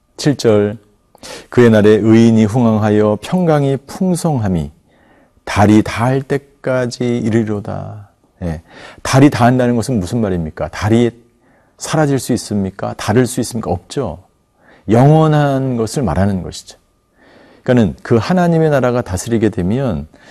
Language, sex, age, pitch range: Korean, male, 40-59, 100-130 Hz